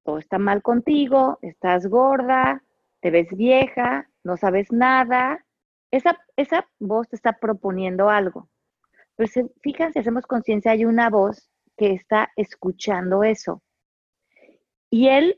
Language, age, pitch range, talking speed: Spanish, 30-49, 195-245 Hz, 125 wpm